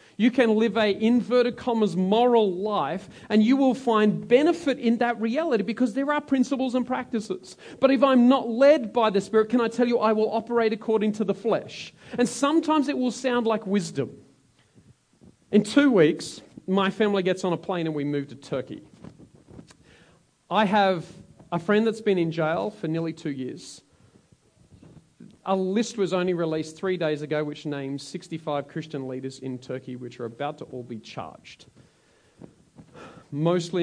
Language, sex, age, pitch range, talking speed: English, male, 40-59, 185-255 Hz, 170 wpm